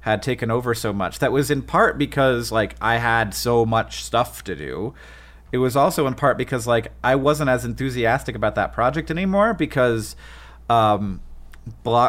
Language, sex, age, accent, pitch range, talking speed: English, male, 30-49, American, 110-135 Hz, 180 wpm